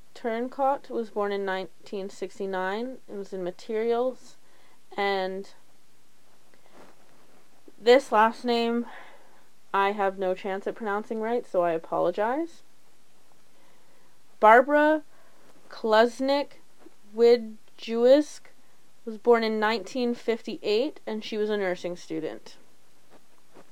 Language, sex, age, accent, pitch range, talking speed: English, female, 20-39, American, 205-245 Hz, 90 wpm